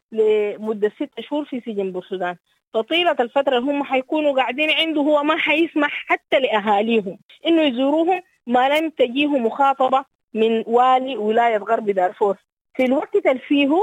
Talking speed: 130 wpm